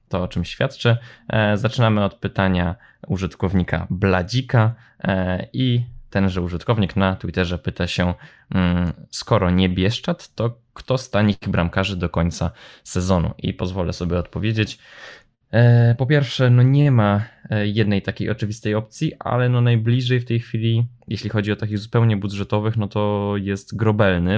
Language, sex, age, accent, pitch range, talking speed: Polish, male, 20-39, native, 95-115 Hz, 140 wpm